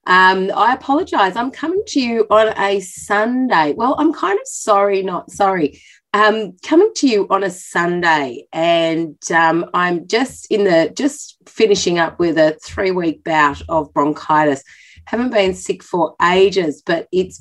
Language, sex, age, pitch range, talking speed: English, female, 30-49, 160-210 Hz, 160 wpm